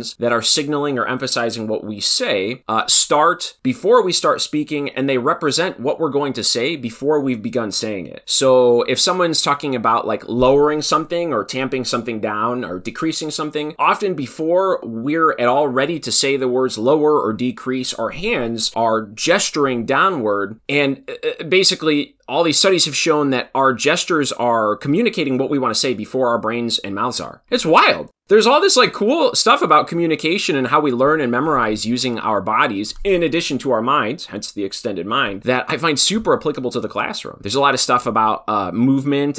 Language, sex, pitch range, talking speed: English, male, 110-150 Hz, 195 wpm